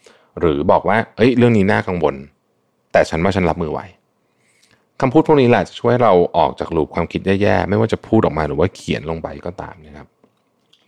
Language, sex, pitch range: Thai, male, 75-105 Hz